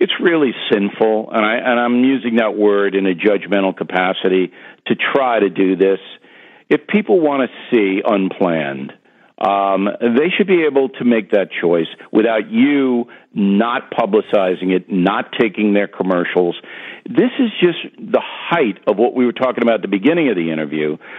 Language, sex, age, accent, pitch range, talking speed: English, male, 50-69, American, 100-155 Hz, 170 wpm